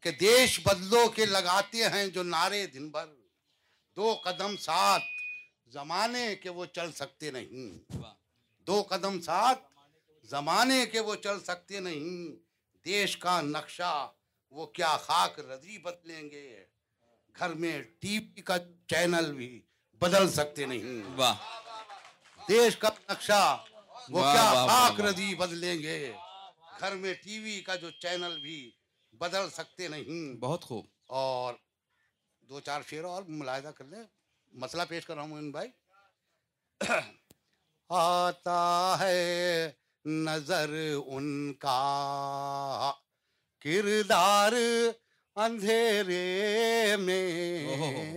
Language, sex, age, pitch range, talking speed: Urdu, male, 60-79, 150-210 Hz, 115 wpm